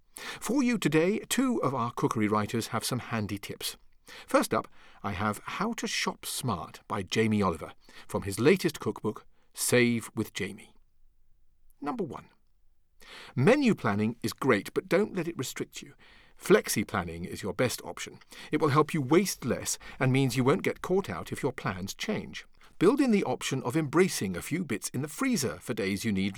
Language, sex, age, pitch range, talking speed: English, male, 50-69, 105-155 Hz, 185 wpm